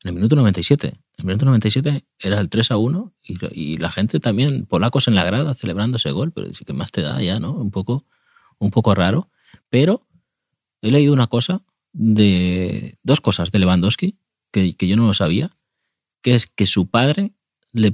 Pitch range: 100-135 Hz